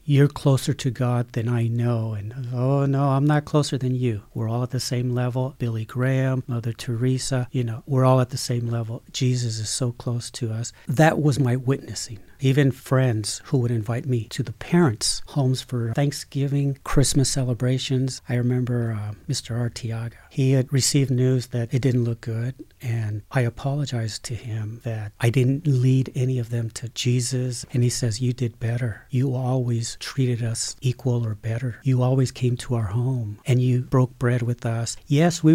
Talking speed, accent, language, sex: 190 wpm, American, English, male